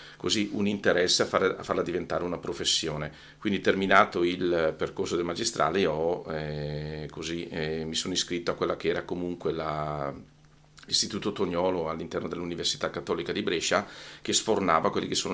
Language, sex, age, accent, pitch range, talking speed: Italian, male, 40-59, native, 80-95 Hz, 140 wpm